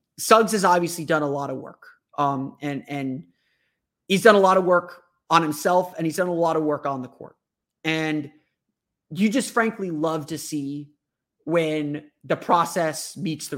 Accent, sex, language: American, male, English